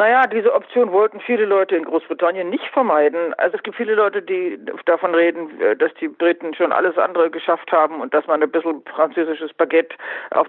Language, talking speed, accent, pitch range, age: German, 195 wpm, German, 160-195 Hz, 50-69